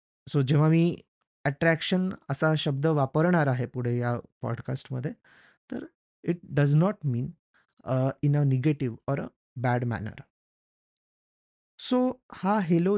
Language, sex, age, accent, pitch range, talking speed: Marathi, male, 30-49, native, 135-165 Hz, 105 wpm